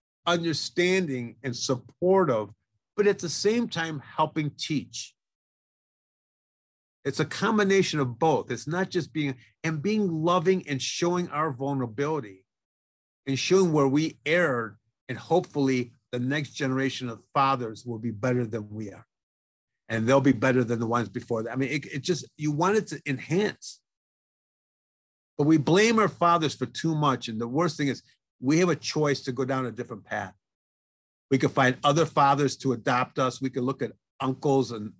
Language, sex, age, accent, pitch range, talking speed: English, male, 50-69, American, 115-155 Hz, 170 wpm